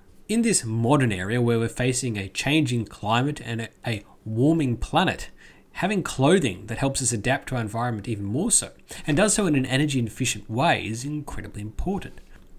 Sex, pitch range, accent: male, 110-155 Hz, Australian